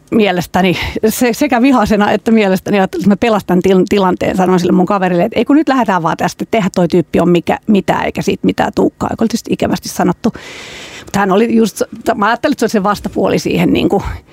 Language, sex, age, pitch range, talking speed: Finnish, female, 40-59, 185-225 Hz, 185 wpm